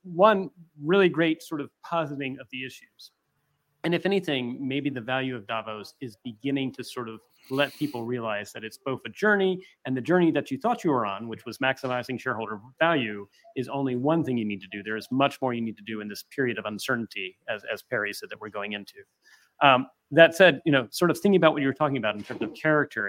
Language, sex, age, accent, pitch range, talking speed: English, male, 30-49, American, 115-150 Hz, 235 wpm